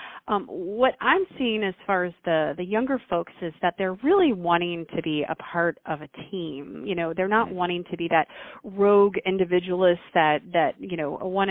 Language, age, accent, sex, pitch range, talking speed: English, 30-49, American, female, 165-205 Hz, 205 wpm